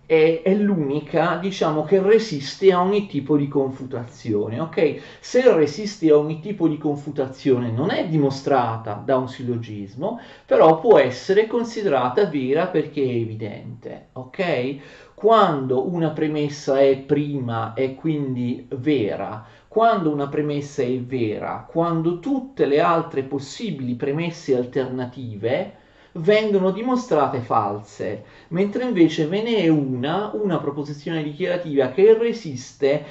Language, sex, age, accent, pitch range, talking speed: Italian, male, 40-59, native, 130-190 Hz, 120 wpm